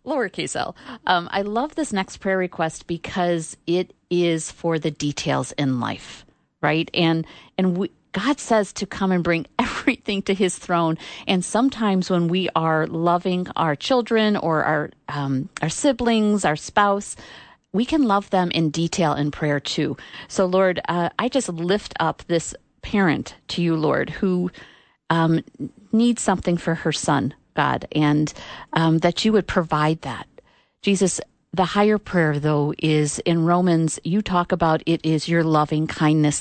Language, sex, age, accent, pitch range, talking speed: English, female, 50-69, American, 155-195 Hz, 160 wpm